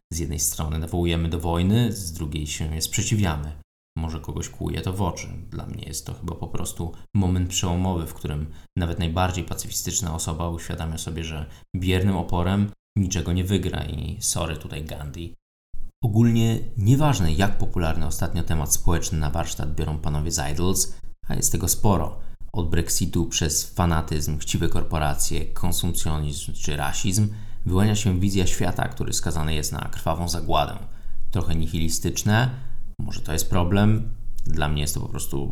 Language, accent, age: Polish, native, 20-39